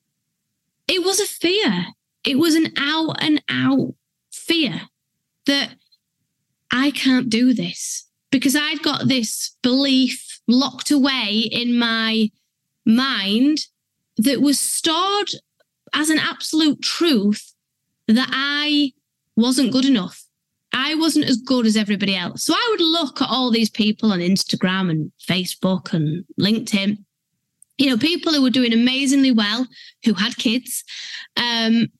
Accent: British